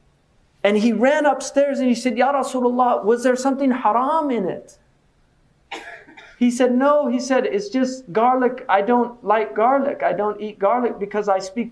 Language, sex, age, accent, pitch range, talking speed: English, male, 40-59, American, 210-255 Hz, 175 wpm